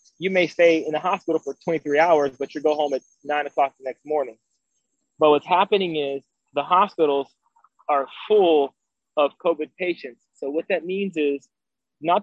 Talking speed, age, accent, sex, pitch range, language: 175 wpm, 20-39, American, male, 145-175 Hz, English